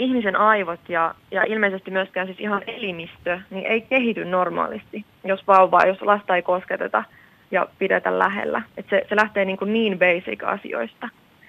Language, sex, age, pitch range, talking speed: Finnish, female, 30-49, 180-210 Hz, 155 wpm